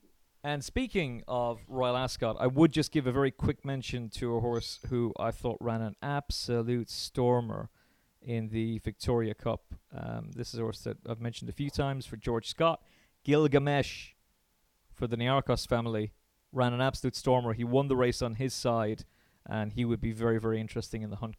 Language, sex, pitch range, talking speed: English, male, 115-145 Hz, 190 wpm